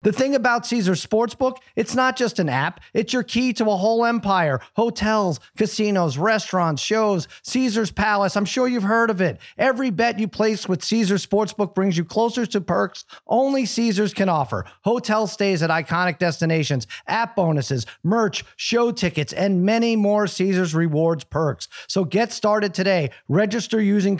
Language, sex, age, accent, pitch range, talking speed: English, male, 40-59, American, 175-220 Hz, 165 wpm